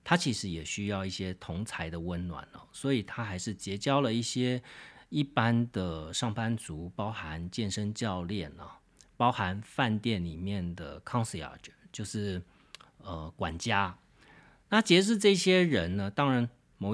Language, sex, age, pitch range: Chinese, male, 40-59, 90-125 Hz